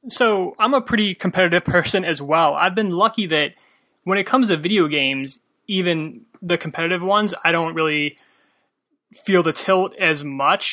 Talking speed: 170 wpm